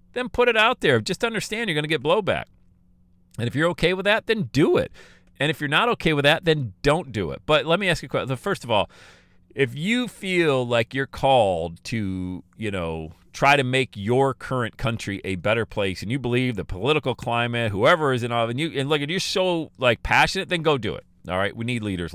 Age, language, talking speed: 40-59, English, 235 wpm